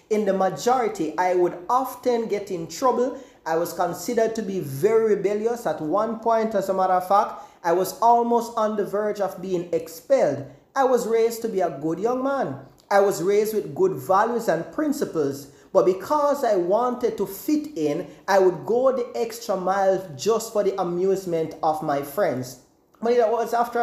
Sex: male